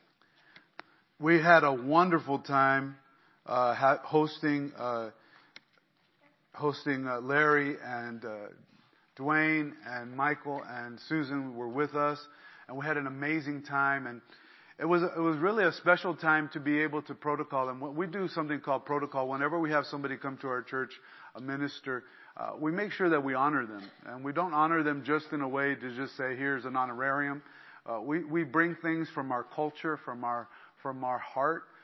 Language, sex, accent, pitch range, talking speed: English, male, American, 135-155 Hz, 175 wpm